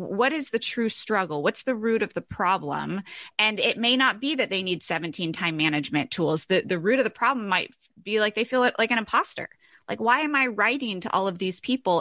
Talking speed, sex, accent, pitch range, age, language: 235 wpm, female, American, 185-245 Hz, 30-49, English